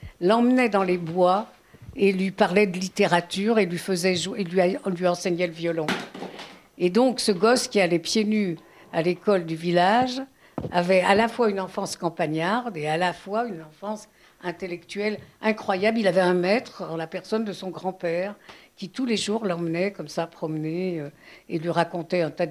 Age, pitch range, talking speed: 60-79, 170-215 Hz, 185 wpm